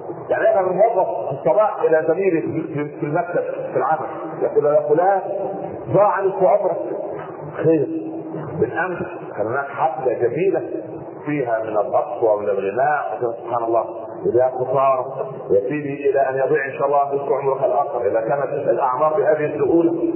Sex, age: male, 40-59